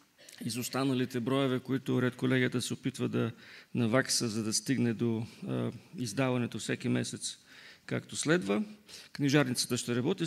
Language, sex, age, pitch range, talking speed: English, male, 40-59, 115-145 Hz, 130 wpm